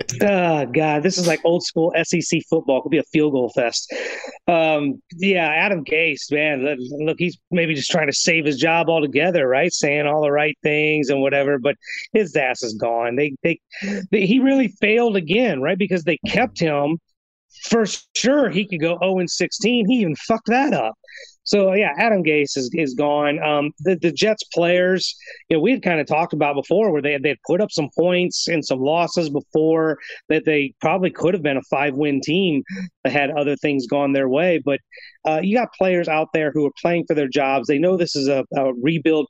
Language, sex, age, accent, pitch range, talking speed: English, male, 30-49, American, 145-185 Hz, 210 wpm